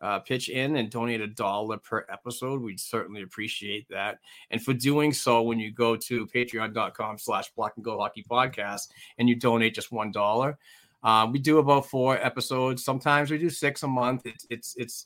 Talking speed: 190 wpm